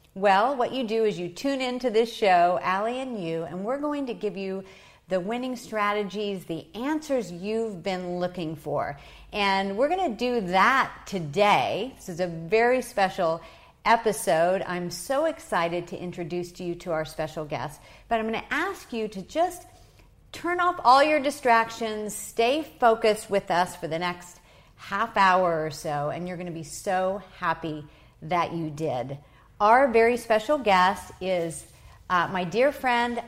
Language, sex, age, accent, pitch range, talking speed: English, female, 50-69, American, 175-235 Hz, 165 wpm